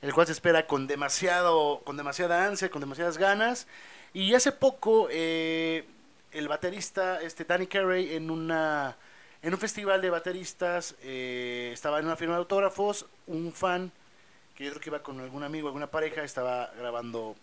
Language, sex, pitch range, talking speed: Spanish, male, 145-180 Hz, 170 wpm